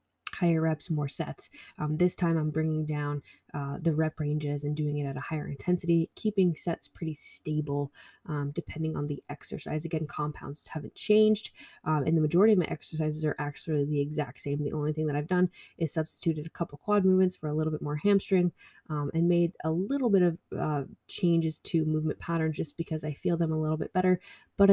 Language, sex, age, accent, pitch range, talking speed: English, female, 20-39, American, 150-175 Hz, 210 wpm